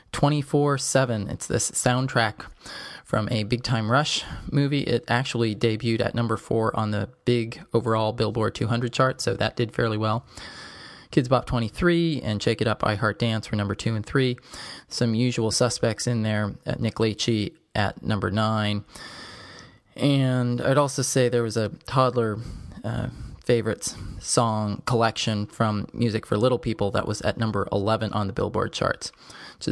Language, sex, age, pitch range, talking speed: English, male, 20-39, 105-125 Hz, 165 wpm